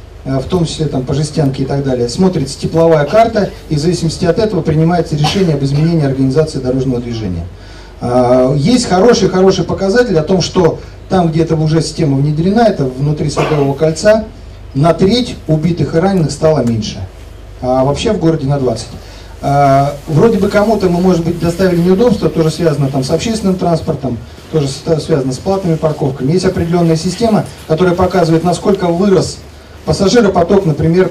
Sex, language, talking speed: male, Russian, 155 wpm